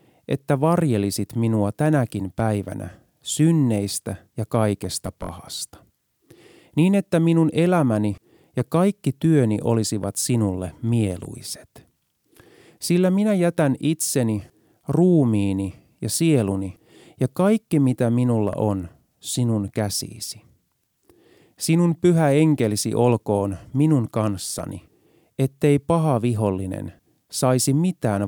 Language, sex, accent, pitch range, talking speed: Finnish, male, native, 100-150 Hz, 95 wpm